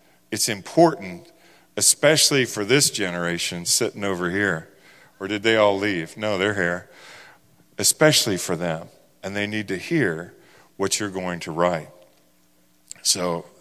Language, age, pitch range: English, 50-69, 85-110 Hz